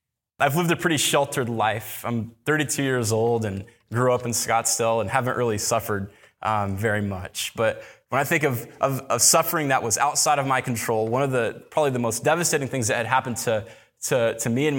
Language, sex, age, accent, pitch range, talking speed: English, male, 20-39, American, 115-135 Hz, 210 wpm